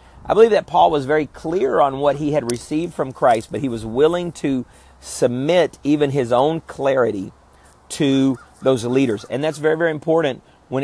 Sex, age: male, 40-59